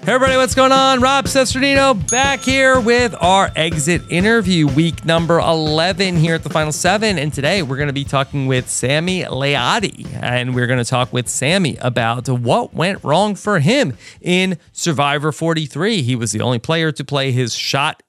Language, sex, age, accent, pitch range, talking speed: English, male, 30-49, American, 120-160 Hz, 185 wpm